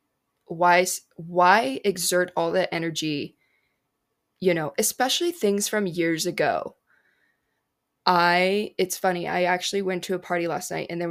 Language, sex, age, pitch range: English, female, 20-39, 170-190 Hz